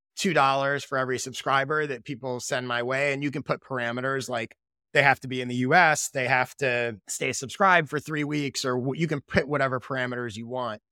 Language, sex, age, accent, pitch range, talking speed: English, male, 30-49, American, 125-155 Hz, 205 wpm